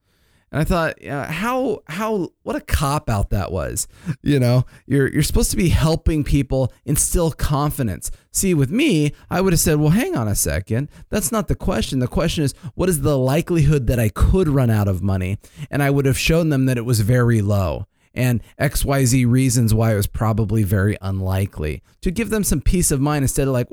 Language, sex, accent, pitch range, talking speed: English, male, American, 110-150 Hz, 215 wpm